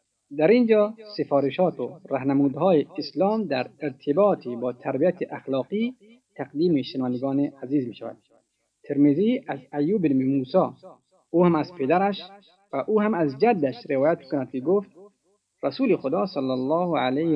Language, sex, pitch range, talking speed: Persian, male, 135-170 Hz, 130 wpm